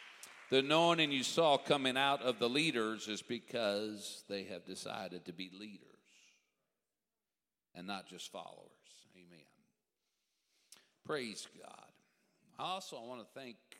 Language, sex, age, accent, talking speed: English, male, 60-79, American, 130 wpm